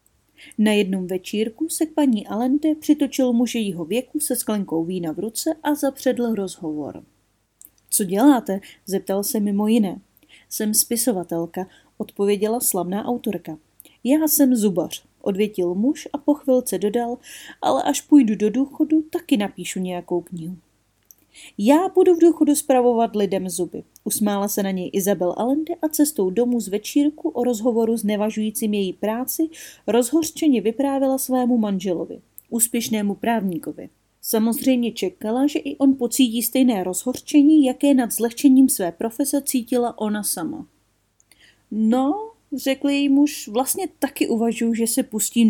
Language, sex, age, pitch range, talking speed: Czech, female, 30-49, 195-270 Hz, 135 wpm